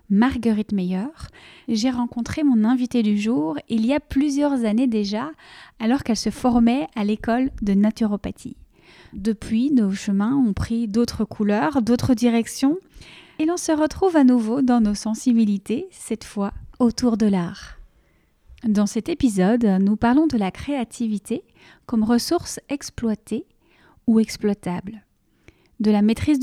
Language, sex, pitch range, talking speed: French, female, 215-255 Hz, 140 wpm